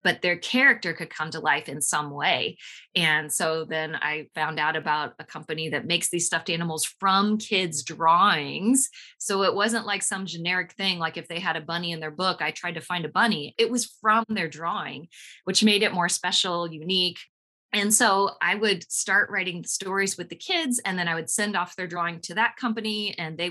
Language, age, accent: English, 20-39, American